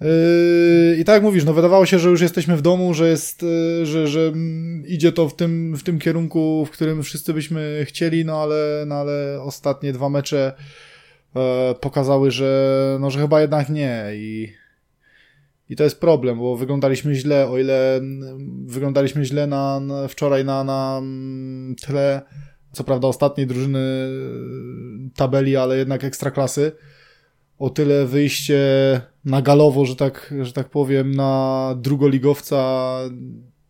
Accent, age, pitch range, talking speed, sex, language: native, 20-39, 130-150 Hz, 140 wpm, male, Polish